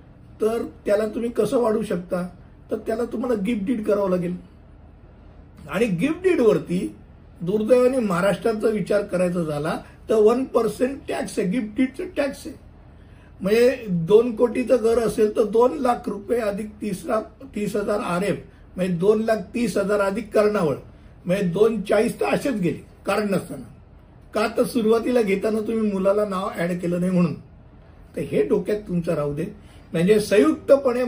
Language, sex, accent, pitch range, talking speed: Hindi, male, native, 165-220 Hz, 100 wpm